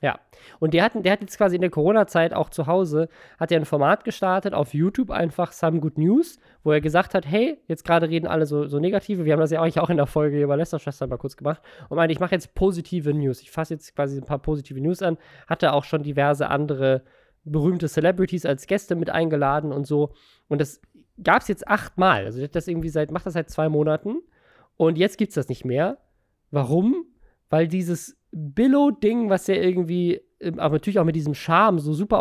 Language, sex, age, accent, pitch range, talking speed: German, male, 20-39, German, 155-195 Hz, 220 wpm